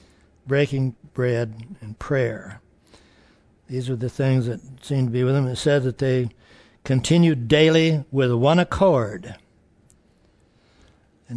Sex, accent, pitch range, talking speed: male, American, 120-145 Hz, 125 wpm